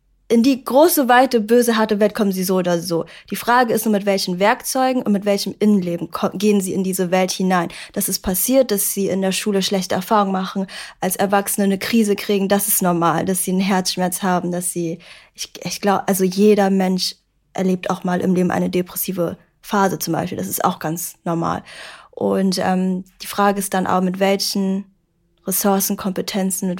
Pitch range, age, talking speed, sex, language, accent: 190-215 Hz, 10-29, 195 wpm, female, German, German